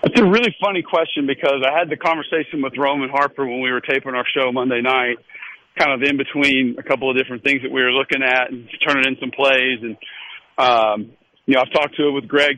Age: 50-69